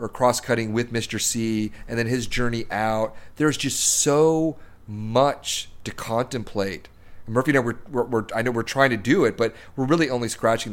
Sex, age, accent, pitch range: male, 30-49, American, 105-125 Hz